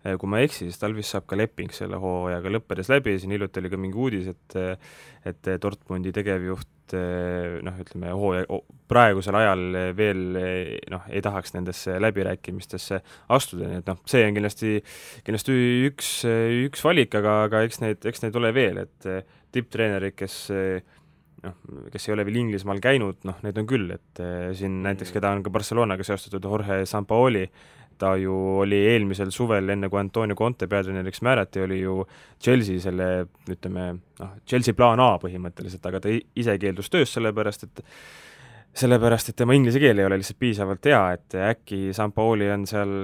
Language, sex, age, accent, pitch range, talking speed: English, male, 20-39, Finnish, 95-115 Hz, 160 wpm